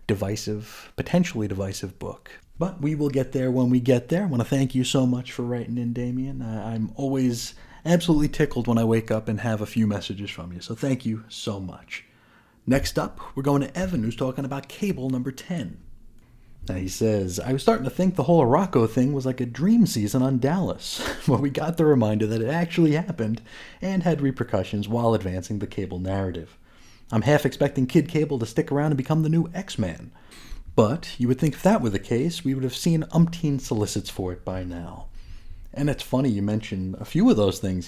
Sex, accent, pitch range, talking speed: male, American, 110-145 Hz, 210 wpm